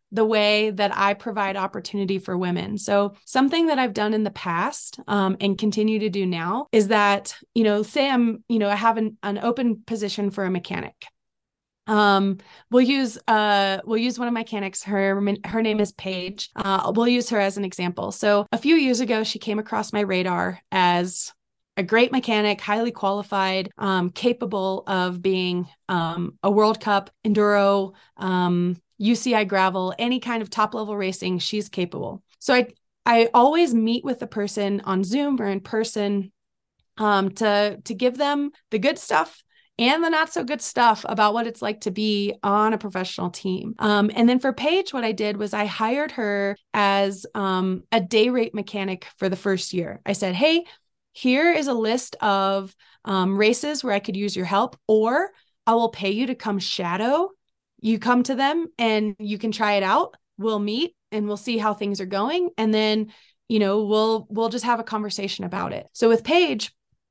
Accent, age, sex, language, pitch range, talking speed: American, 30-49, female, English, 195-230 Hz, 190 wpm